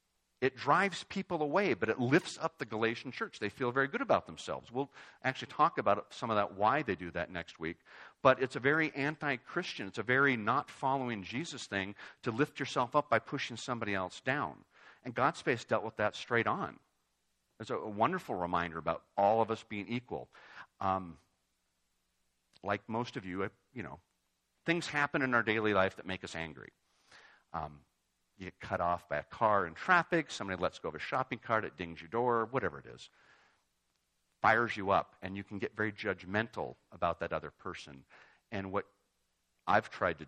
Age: 50-69